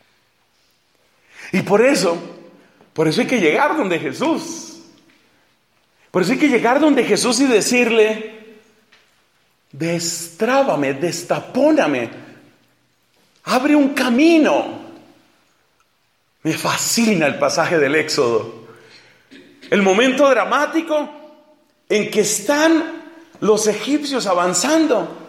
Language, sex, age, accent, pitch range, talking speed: Spanish, male, 40-59, Mexican, 180-290 Hz, 95 wpm